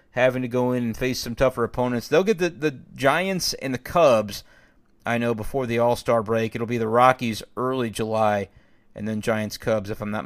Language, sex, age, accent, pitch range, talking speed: English, male, 30-49, American, 115-150 Hz, 205 wpm